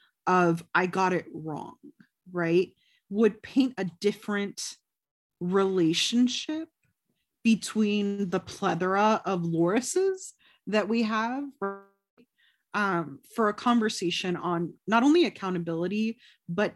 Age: 30-49